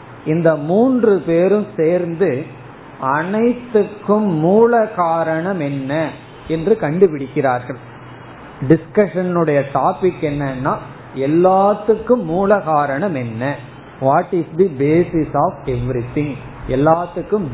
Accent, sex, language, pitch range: native, male, Tamil, 135-175 Hz